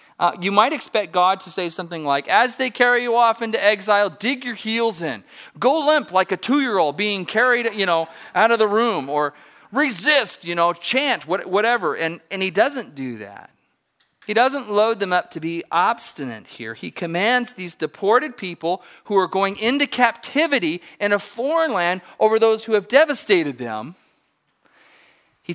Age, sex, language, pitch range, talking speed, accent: 40-59, male, English, 160-225 Hz, 175 wpm, American